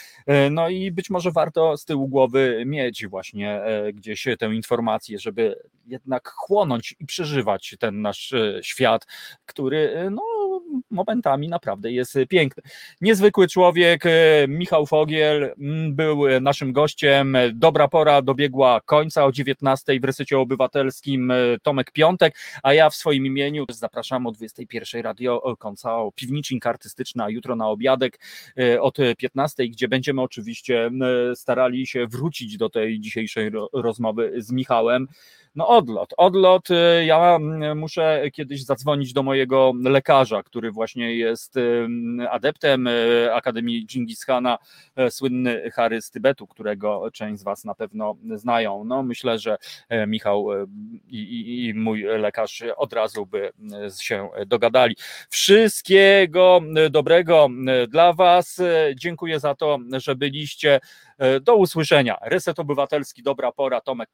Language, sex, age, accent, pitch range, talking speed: Polish, male, 30-49, native, 115-155 Hz, 125 wpm